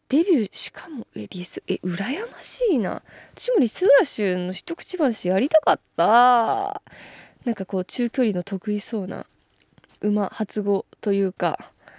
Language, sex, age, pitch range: Japanese, female, 20-39, 200-290 Hz